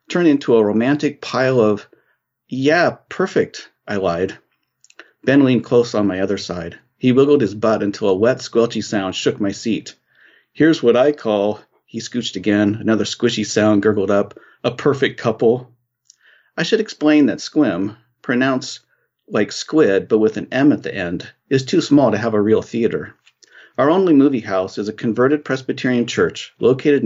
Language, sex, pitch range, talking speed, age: English, male, 105-135 Hz, 170 wpm, 50-69